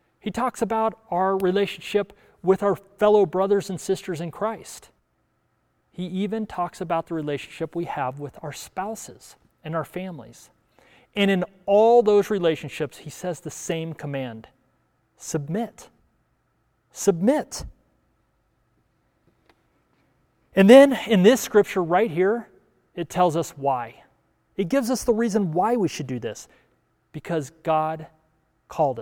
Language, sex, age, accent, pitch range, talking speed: English, male, 30-49, American, 160-205 Hz, 130 wpm